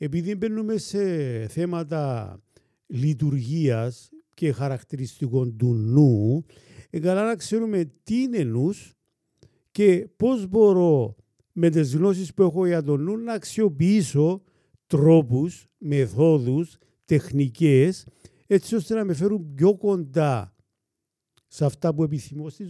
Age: 50-69